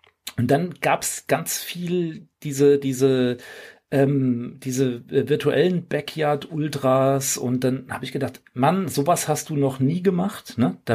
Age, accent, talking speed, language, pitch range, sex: 40-59, German, 125 wpm, German, 125-150 Hz, male